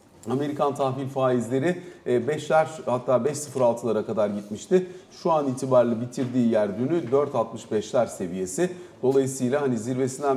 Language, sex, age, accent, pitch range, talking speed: Turkish, male, 40-59, native, 120-160 Hz, 110 wpm